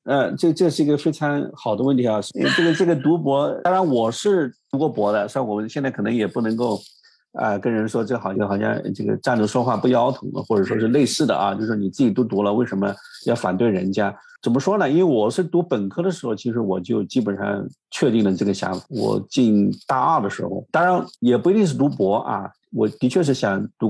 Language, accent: Chinese, native